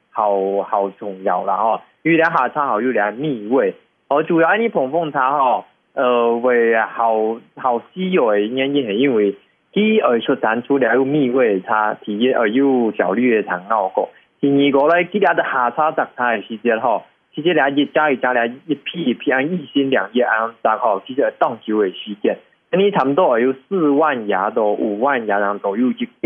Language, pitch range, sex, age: English, 110-145 Hz, male, 20-39